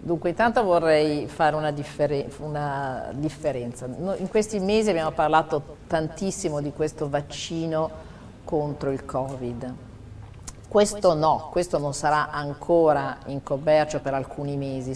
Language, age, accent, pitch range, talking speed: Italian, 50-69, native, 130-155 Hz, 130 wpm